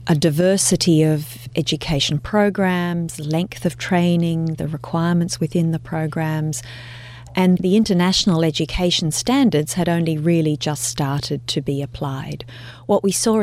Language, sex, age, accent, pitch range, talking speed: English, female, 30-49, Australian, 140-175 Hz, 130 wpm